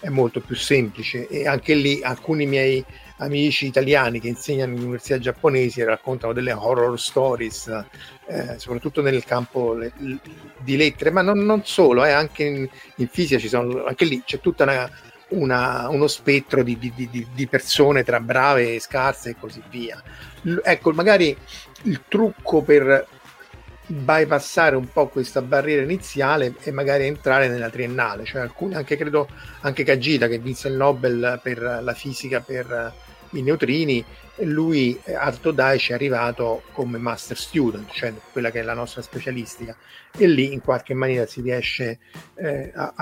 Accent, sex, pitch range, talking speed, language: native, male, 120-145 Hz, 160 wpm, Italian